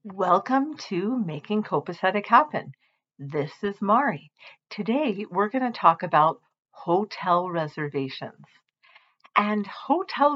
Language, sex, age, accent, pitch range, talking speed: English, female, 50-69, American, 175-220 Hz, 105 wpm